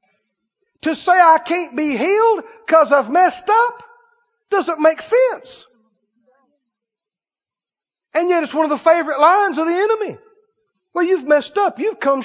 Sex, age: male, 50-69